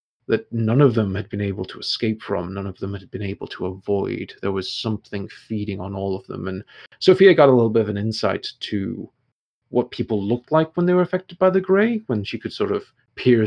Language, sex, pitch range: English, male, 105-130 Hz